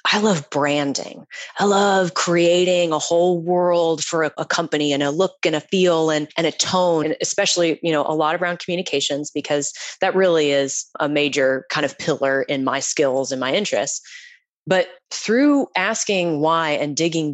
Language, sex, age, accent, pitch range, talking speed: English, female, 20-39, American, 145-180 Hz, 180 wpm